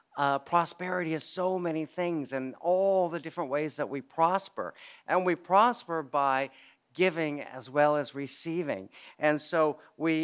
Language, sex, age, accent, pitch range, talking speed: English, male, 50-69, American, 140-175 Hz, 150 wpm